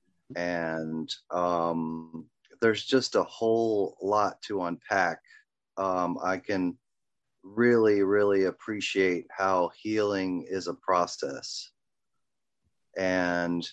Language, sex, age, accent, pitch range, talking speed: English, male, 30-49, American, 90-100 Hz, 90 wpm